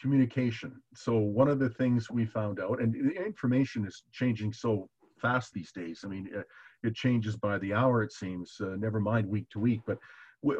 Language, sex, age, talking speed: English, male, 50-69, 205 wpm